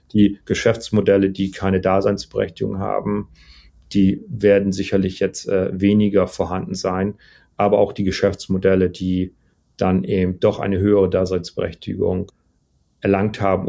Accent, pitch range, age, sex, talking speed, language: German, 90-100 Hz, 40-59, male, 120 wpm, German